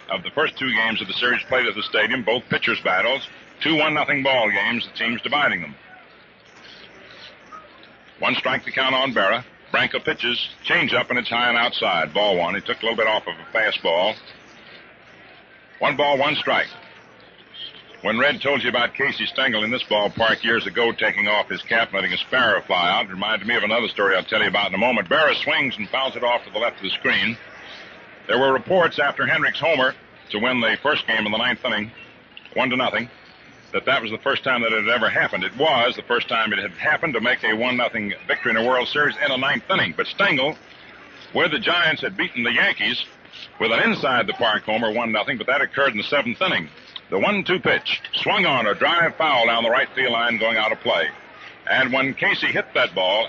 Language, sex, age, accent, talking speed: English, male, 60-79, American, 220 wpm